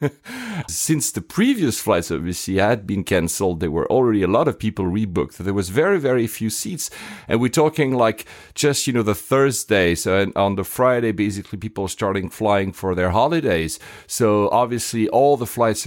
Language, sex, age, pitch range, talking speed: English, male, 40-59, 95-125 Hz, 185 wpm